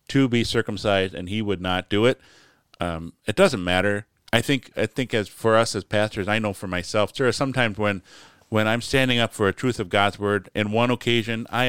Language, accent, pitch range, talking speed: English, American, 95-115 Hz, 220 wpm